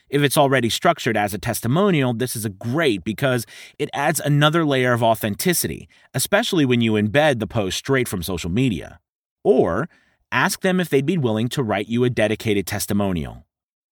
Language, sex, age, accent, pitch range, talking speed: English, male, 30-49, American, 110-155 Hz, 175 wpm